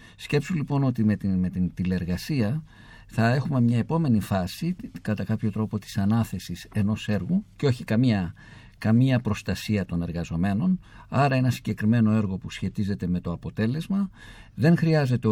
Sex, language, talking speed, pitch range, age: male, Greek, 150 wpm, 105-155 Hz, 50-69